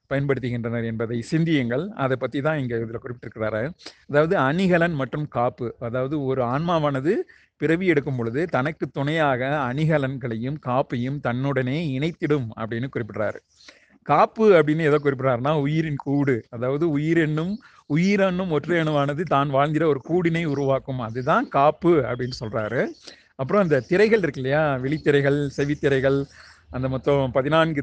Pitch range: 130-160 Hz